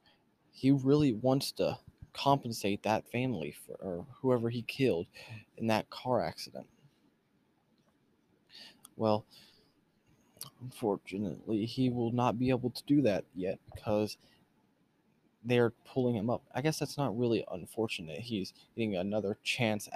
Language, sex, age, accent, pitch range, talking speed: English, male, 20-39, American, 100-120 Hz, 125 wpm